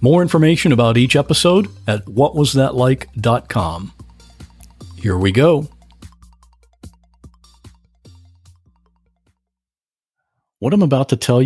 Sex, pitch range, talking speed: male, 105-150 Hz, 80 wpm